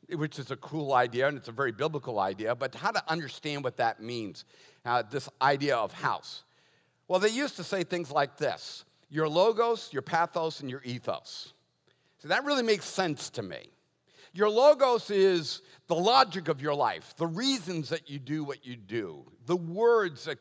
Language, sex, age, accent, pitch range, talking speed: English, male, 50-69, American, 145-205 Hz, 190 wpm